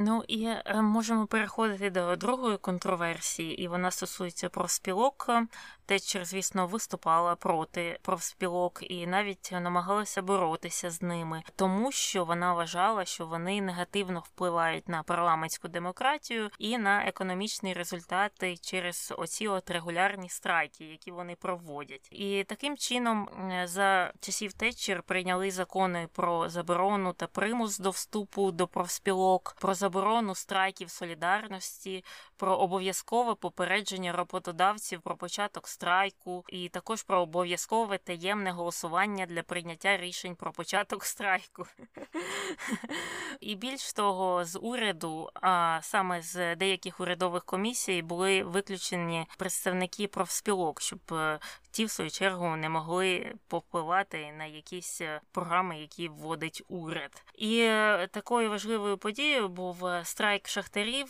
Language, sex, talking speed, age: Ukrainian, female, 120 wpm, 20-39